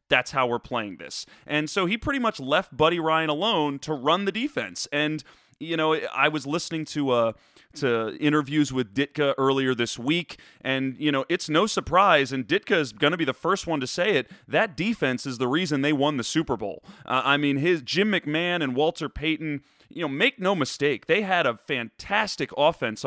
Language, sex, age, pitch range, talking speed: English, male, 30-49, 135-180 Hz, 210 wpm